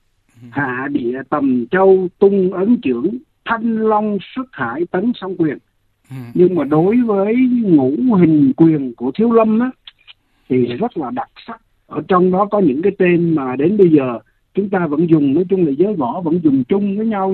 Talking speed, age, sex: 190 wpm, 60-79, male